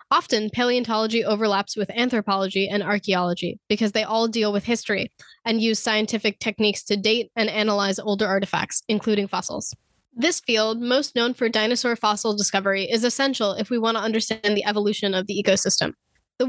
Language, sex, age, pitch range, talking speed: English, female, 10-29, 205-245 Hz, 165 wpm